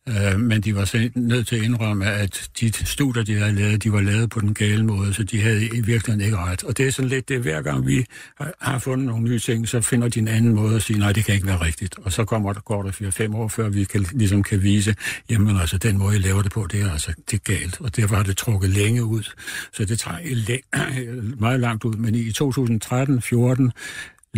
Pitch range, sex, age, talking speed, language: 100-115 Hz, male, 60-79, 250 wpm, Danish